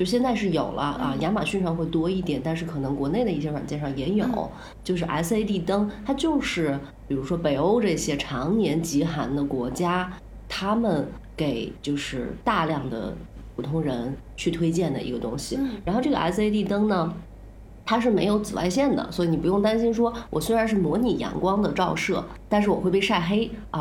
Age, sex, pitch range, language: 30-49, female, 150-210 Hz, Chinese